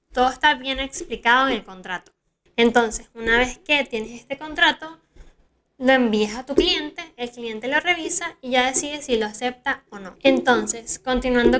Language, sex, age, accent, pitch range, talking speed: Spanish, female, 10-29, American, 215-275 Hz, 170 wpm